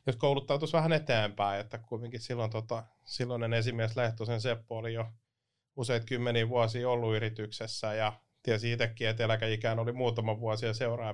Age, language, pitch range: 30-49, Finnish, 115-130 Hz